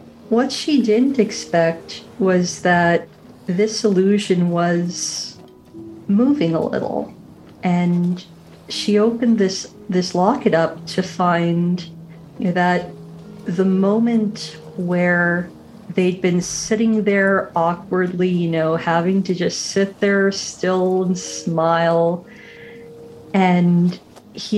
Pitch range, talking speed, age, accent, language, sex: 170-195 Hz, 105 wpm, 40-59, American, English, female